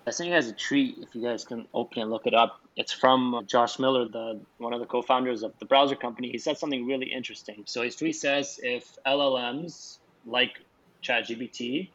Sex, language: male, English